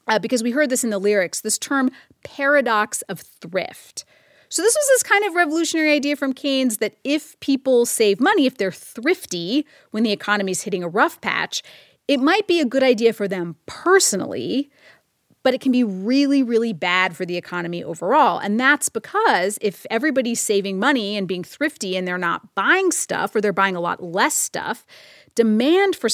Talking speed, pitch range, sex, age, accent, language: 190 wpm, 200-285 Hz, female, 30-49, American, English